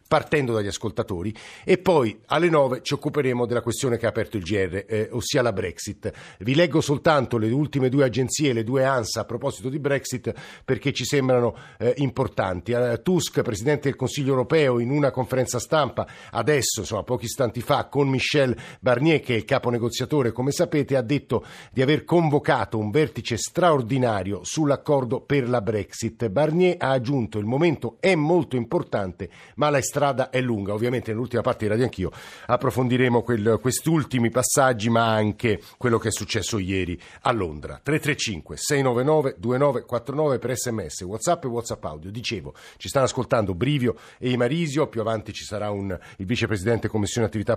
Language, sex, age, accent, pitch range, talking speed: Italian, male, 50-69, native, 110-140 Hz, 165 wpm